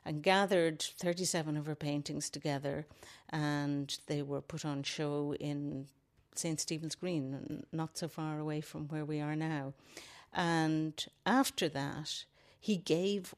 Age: 60-79